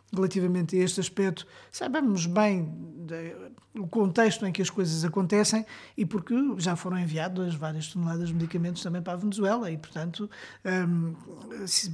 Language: Portuguese